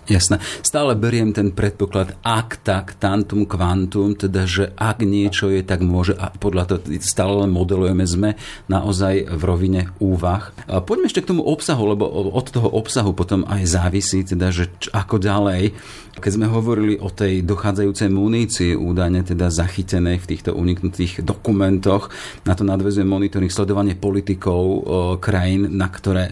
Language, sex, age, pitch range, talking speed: Slovak, male, 40-59, 90-105 Hz, 155 wpm